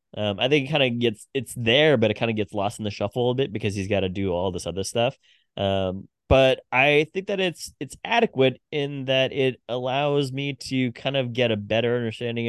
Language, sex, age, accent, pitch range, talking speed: English, male, 20-39, American, 100-125 Hz, 235 wpm